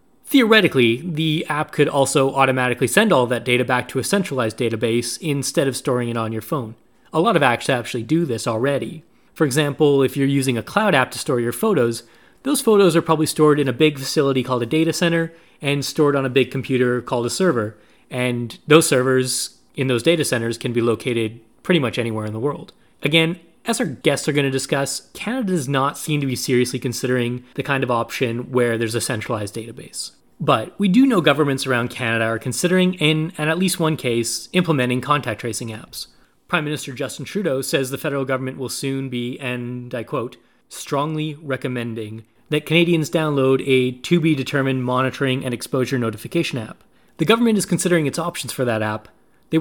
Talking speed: 190 wpm